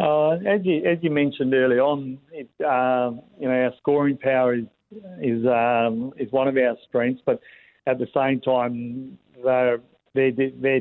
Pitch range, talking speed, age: 115-135 Hz, 150 wpm, 50-69